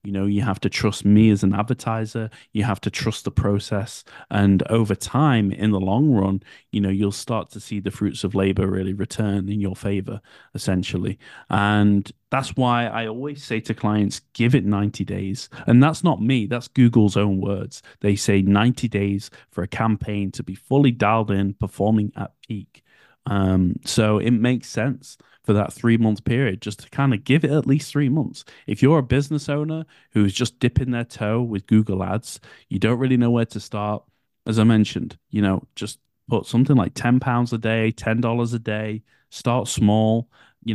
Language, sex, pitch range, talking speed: English, male, 100-125 Hz, 195 wpm